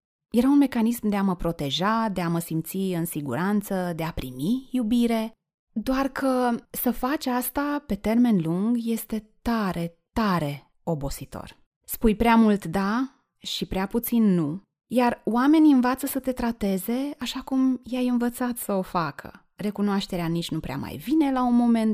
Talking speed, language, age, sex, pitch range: 160 wpm, Romanian, 20-39, female, 180-240 Hz